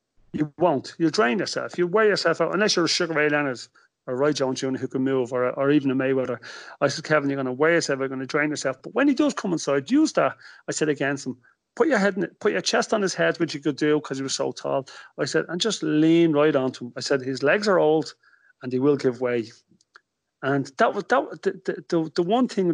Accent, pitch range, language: British, 130-160 Hz, English